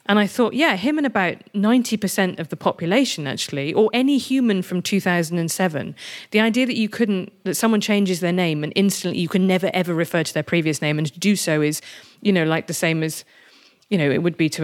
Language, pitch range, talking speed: English, 165-220 Hz, 225 wpm